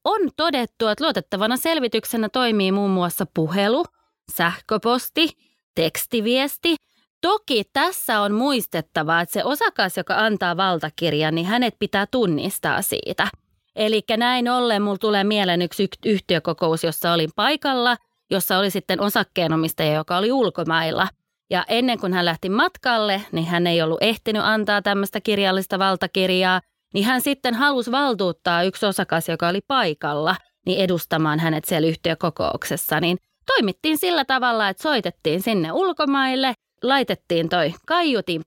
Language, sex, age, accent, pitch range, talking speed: Finnish, female, 20-39, native, 175-245 Hz, 135 wpm